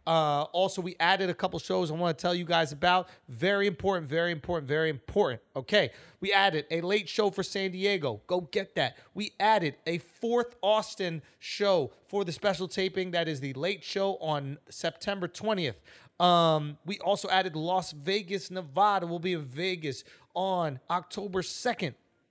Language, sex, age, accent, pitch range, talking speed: English, male, 30-49, American, 155-195 Hz, 170 wpm